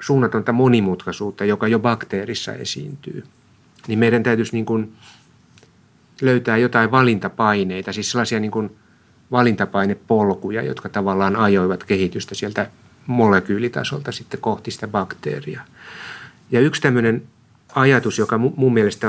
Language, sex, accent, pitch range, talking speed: Finnish, male, native, 100-125 Hz, 100 wpm